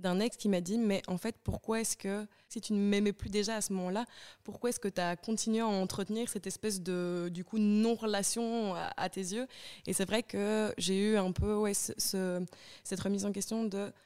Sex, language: female, French